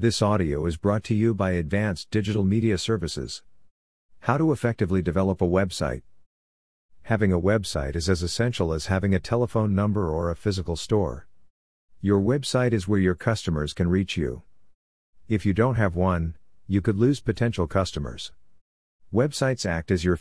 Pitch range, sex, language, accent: 85-105 Hz, male, English, American